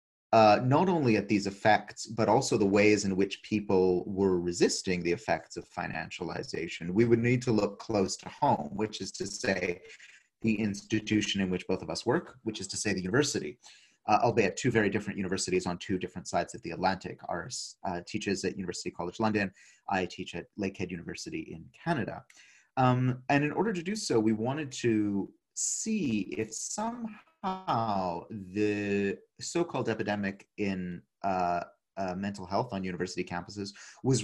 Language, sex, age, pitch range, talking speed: English, male, 30-49, 95-115 Hz, 175 wpm